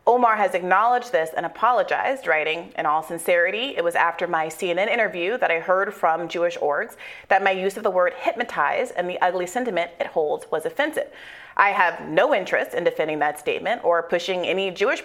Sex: female